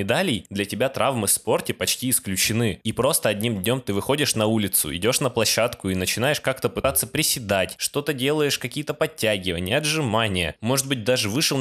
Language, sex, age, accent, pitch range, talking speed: Russian, male, 20-39, native, 100-135 Hz, 170 wpm